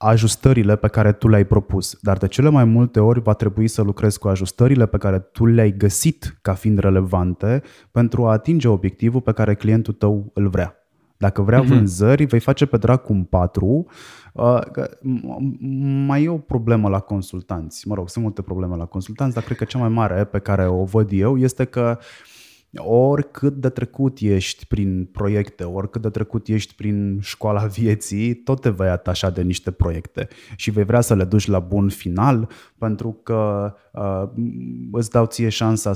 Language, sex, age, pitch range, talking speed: Romanian, male, 20-39, 95-120 Hz, 180 wpm